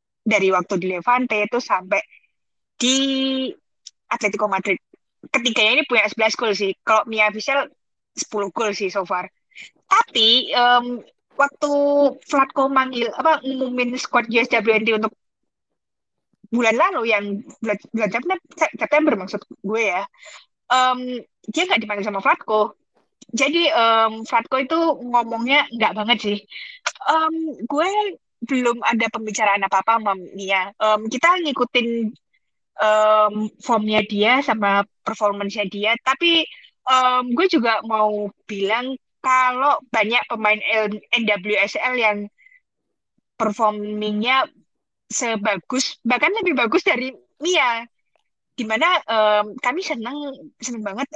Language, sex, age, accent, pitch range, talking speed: Indonesian, female, 20-39, native, 210-265 Hz, 110 wpm